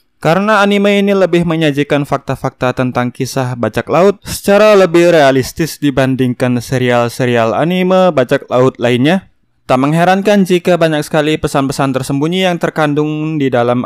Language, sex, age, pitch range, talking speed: Indonesian, male, 20-39, 125-165 Hz, 130 wpm